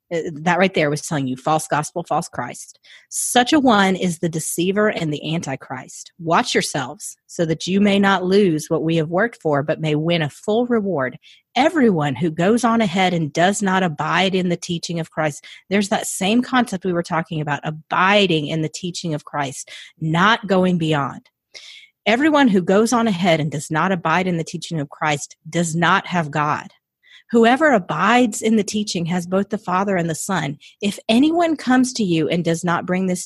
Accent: American